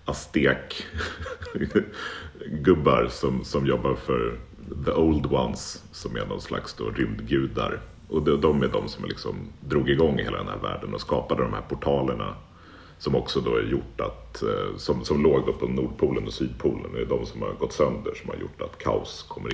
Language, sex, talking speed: Swedish, male, 185 wpm